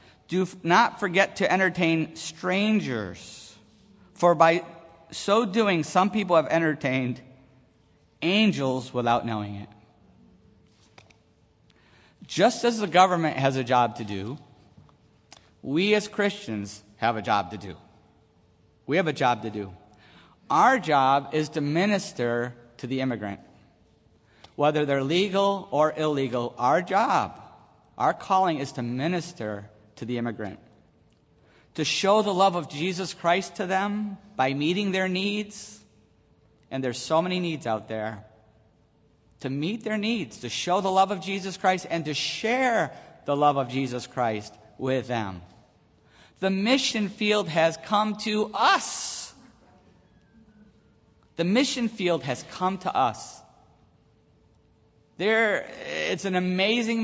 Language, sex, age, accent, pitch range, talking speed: English, male, 50-69, American, 115-190 Hz, 130 wpm